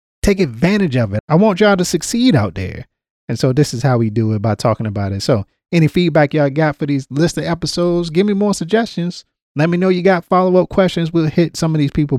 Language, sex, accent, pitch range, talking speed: English, male, American, 130-180 Hz, 250 wpm